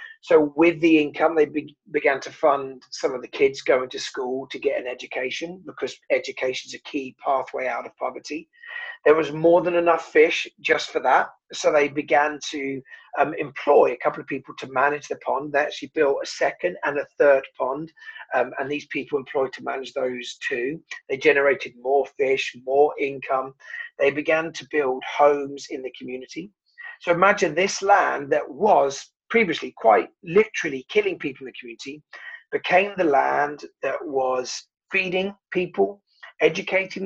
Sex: male